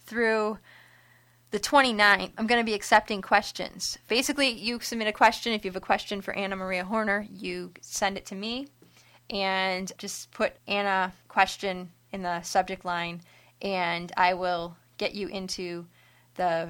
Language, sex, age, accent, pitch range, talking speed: English, female, 20-39, American, 185-225 Hz, 160 wpm